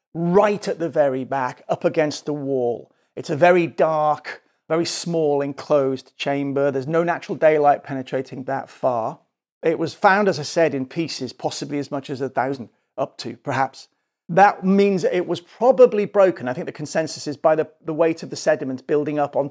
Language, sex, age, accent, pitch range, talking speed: English, male, 40-59, British, 145-185 Hz, 190 wpm